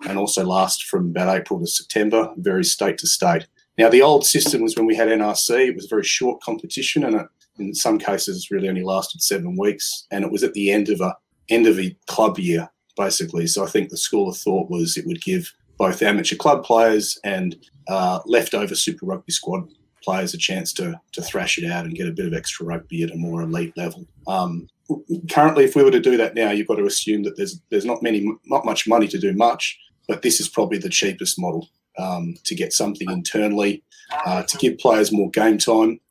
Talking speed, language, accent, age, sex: 225 wpm, English, Australian, 30-49, male